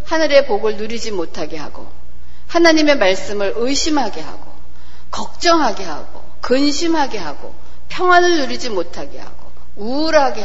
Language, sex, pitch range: Korean, female, 210-305 Hz